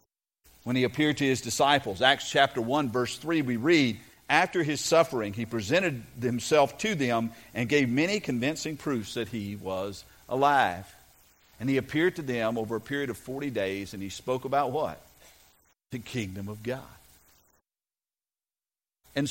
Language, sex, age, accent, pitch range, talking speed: English, male, 50-69, American, 110-155 Hz, 160 wpm